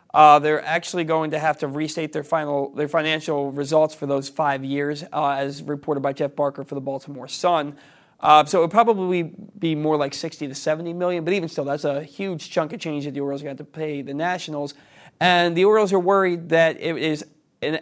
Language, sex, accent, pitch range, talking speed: English, male, American, 145-165 Hz, 220 wpm